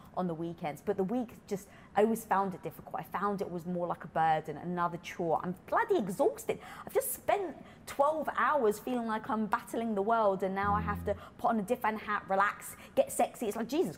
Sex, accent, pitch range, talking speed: female, British, 175-225 Hz, 225 wpm